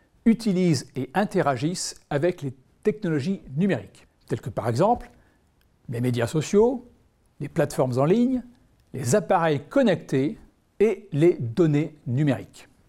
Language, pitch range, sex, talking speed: French, 140-195 Hz, male, 115 wpm